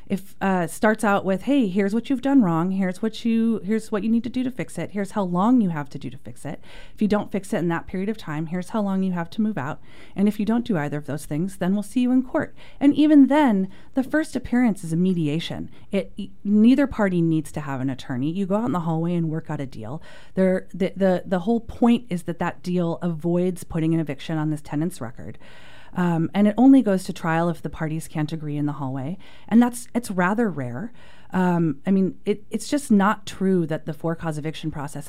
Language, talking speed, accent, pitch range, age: English, 250 wpm, American, 155-210 Hz, 30-49